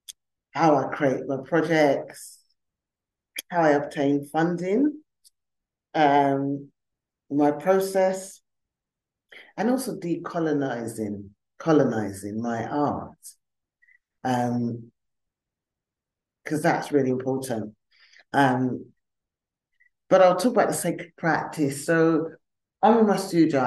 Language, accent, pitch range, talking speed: English, British, 125-155 Hz, 90 wpm